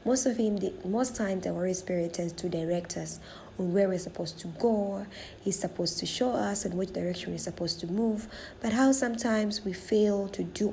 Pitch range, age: 175-225 Hz, 20-39